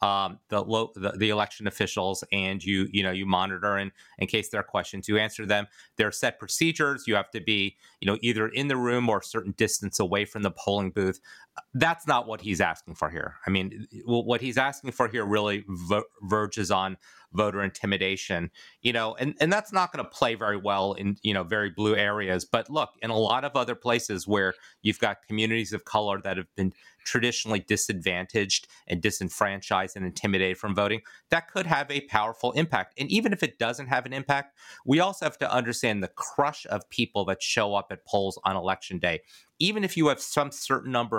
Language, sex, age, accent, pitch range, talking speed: English, male, 30-49, American, 100-125 Hz, 210 wpm